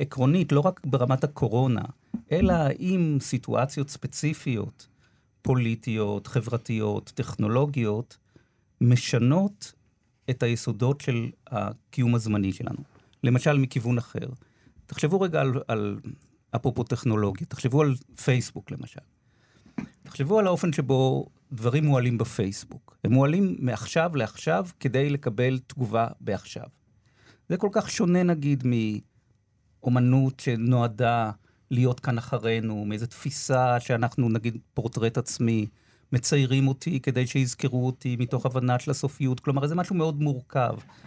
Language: Hebrew